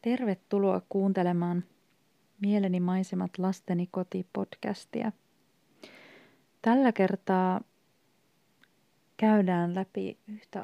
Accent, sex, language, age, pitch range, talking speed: native, female, Finnish, 30-49, 180-205 Hz, 60 wpm